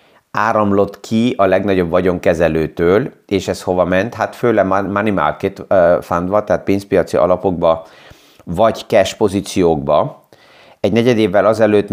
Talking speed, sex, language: 120 wpm, male, Hungarian